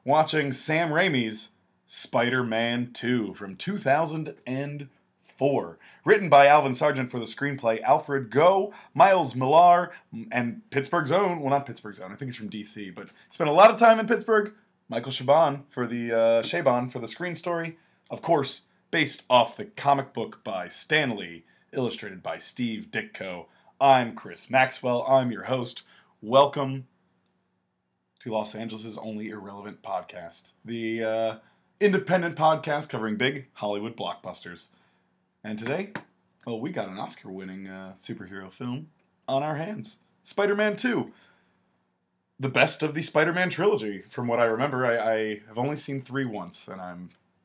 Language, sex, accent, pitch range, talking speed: English, male, American, 110-155 Hz, 145 wpm